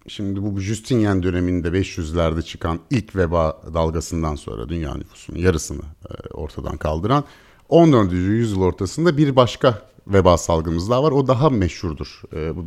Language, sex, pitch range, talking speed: Turkish, male, 80-115 Hz, 135 wpm